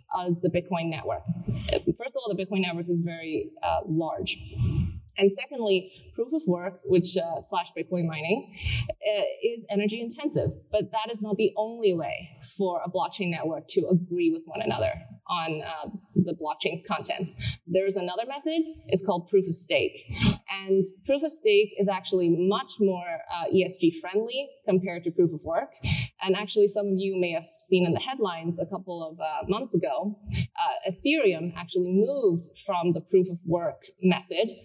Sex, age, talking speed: female, 20-39, 170 wpm